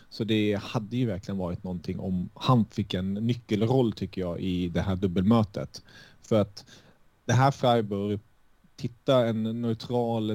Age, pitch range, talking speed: 30-49, 100-115 Hz, 150 wpm